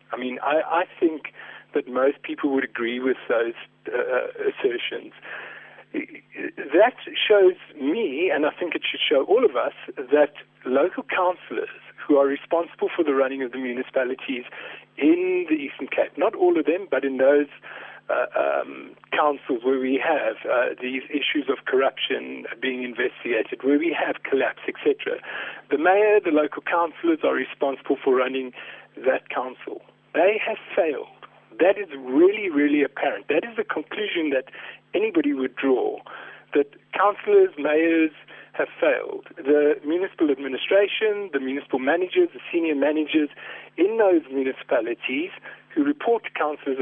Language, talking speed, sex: English, 145 wpm, male